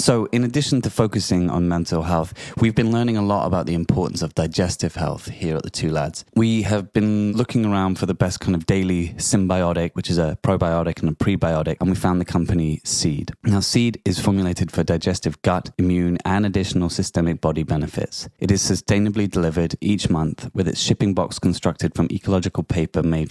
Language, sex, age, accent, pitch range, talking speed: English, male, 20-39, British, 80-100 Hz, 200 wpm